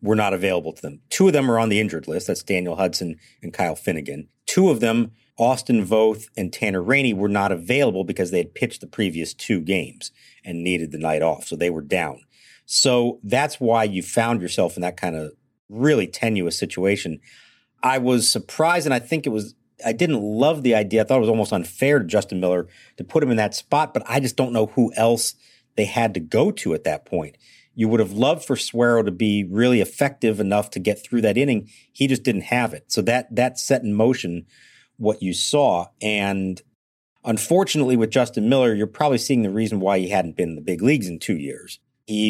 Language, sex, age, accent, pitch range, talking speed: English, male, 50-69, American, 95-125 Hz, 220 wpm